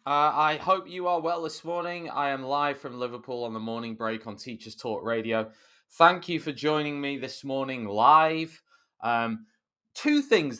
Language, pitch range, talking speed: English, 120-170 Hz, 180 wpm